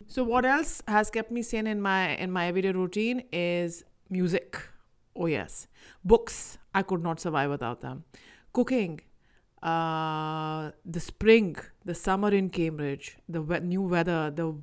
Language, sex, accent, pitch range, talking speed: English, female, Indian, 175-235 Hz, 150 wpm